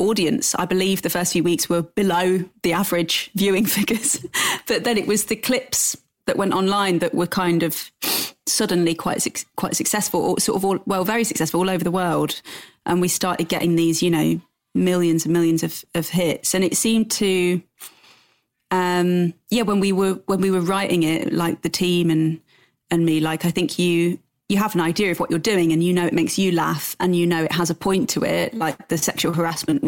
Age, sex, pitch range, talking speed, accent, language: 30-49, female, 165-195 Hz, 215 wpm, British, English